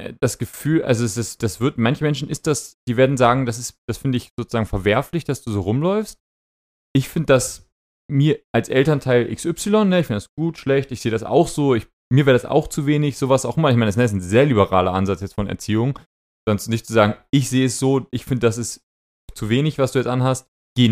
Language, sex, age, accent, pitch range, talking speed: German, male, 30-49, German, 110-145 Hz, 245 wpm